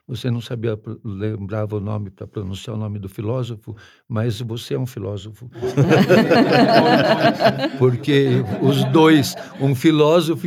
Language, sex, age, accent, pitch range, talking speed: Portuguese, male, 60-79, Brazilian, 115-155 Hz, 125 wpm